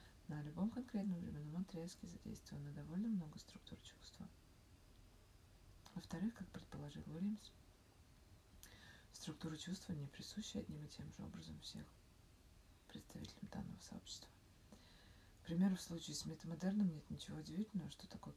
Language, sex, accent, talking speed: Russian, female, native, 125 wpm